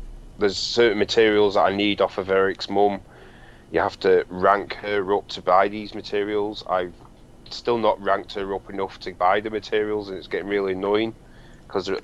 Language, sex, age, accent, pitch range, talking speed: English, male, 30-49, British, 95-110 Hz, 185 wpm